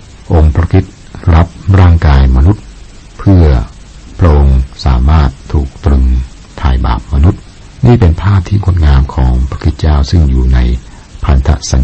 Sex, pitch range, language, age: male, 70-95 Hz, Thai, 60-79